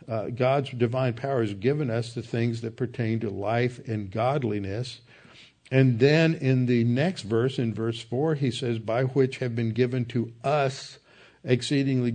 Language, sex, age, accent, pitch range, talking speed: English, male, 60-79, American, 115-135 Hz, 170 wpm